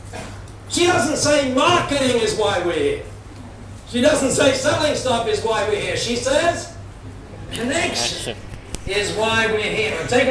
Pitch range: 195-260 Hz